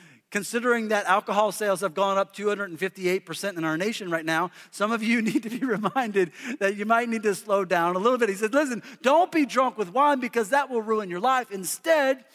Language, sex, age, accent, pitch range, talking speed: English, male, 40-59, American, 190-235 Hz, 220 wpm